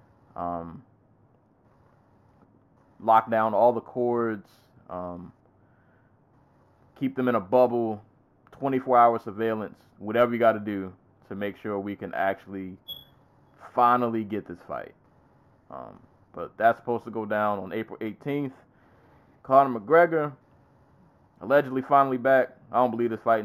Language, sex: English, male